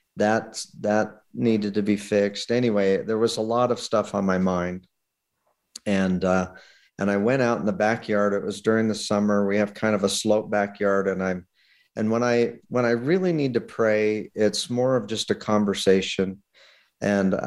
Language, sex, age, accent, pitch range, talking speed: English, male, 50-69, American, 100-120 Hz, 190 wpm